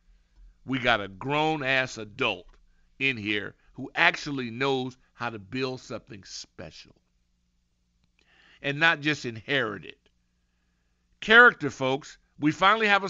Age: 50-69